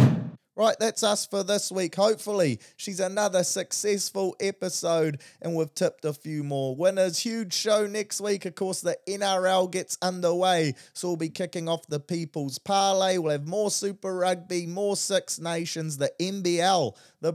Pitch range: 160-195 Hz